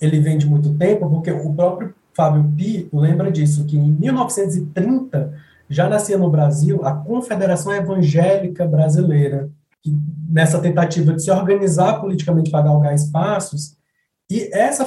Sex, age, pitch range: male, 20-39, 145-180 Hz